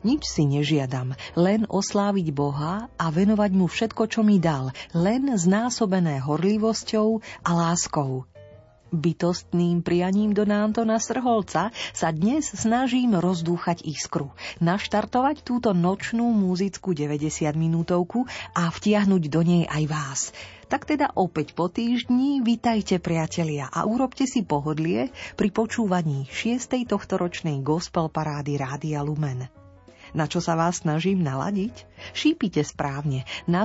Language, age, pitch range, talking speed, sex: Slovak, 40-59, 155-215 Hz, 120 wpm, female